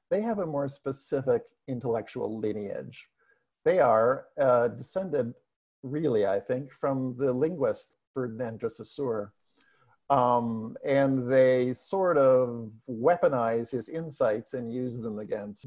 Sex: male